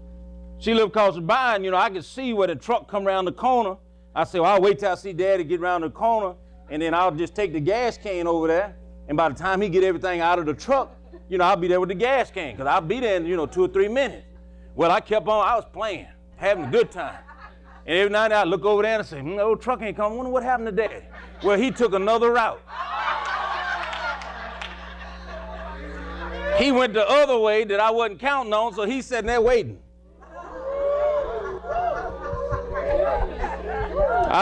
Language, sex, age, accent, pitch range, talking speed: English, male, 40-59, American, 185-245 Hz, 220 wpm